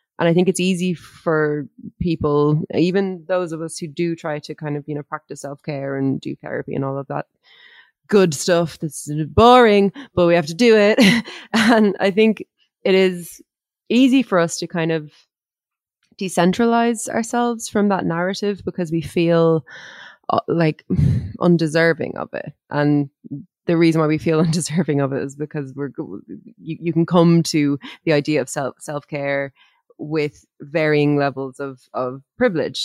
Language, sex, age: English, female, 20-39